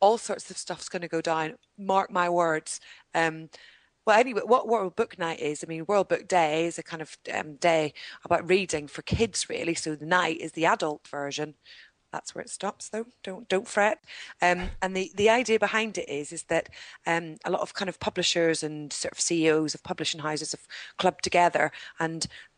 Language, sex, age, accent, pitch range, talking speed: English, female, 30-49, British, 165-205 Hz, 205 wpm